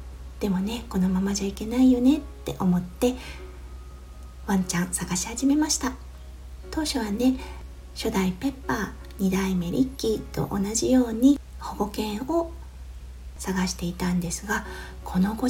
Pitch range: 185-260 Hz